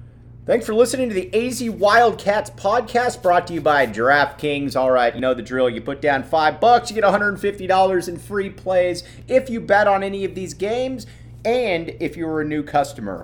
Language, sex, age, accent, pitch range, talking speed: English, male, 30-49, American, 120-190 Hz, 205 wpm